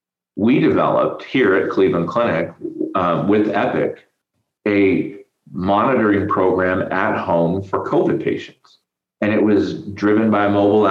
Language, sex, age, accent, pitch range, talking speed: English, male, 30-49, American, 90-110 Hz, 130 wpm